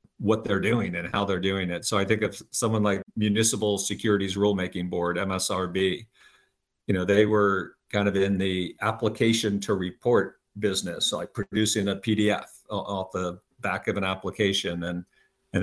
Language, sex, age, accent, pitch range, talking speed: English, male, 50-69, American, 95-105 Hz, 165 wpm